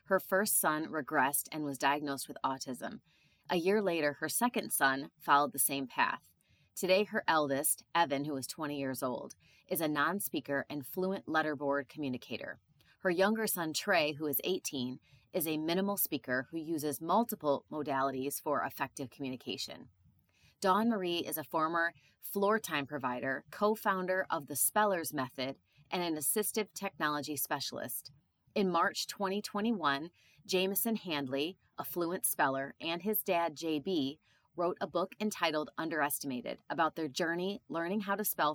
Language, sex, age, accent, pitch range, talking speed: English, female, 30-49, American, 140-190 Hz, 150 wpm